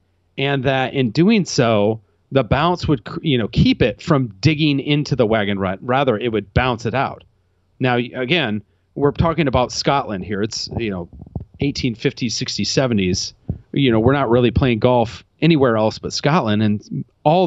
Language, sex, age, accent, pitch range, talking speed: English, male, 40-59, American, 105-145 Hz, 175 wpm